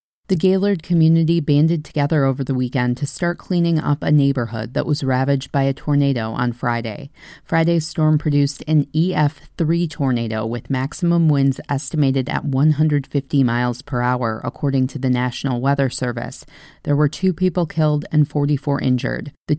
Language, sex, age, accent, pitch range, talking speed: English, female, 30-49, American, 135-155 Hz, 160 wpm